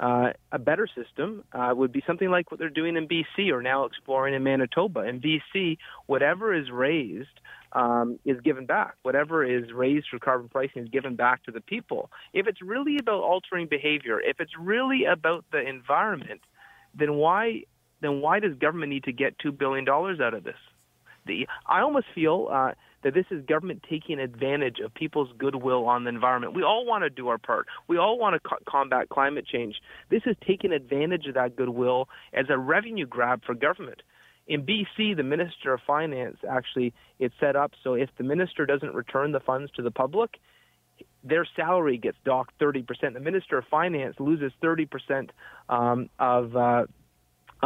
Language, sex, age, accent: English, male, 30-49, American